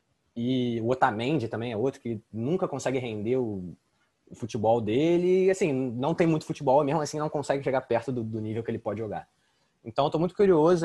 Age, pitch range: 20-39, 115-150 Hz